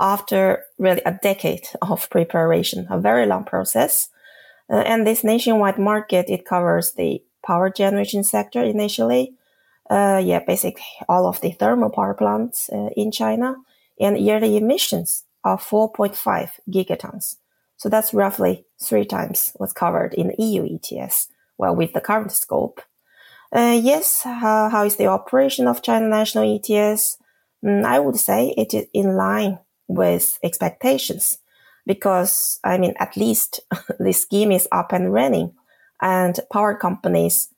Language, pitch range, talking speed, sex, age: English, 185-235 Hz, 145 wpm, female, 20-39